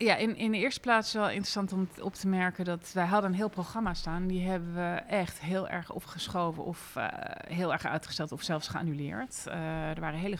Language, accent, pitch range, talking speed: Dutch, Dutch, 150-185 Hz, 220 wpm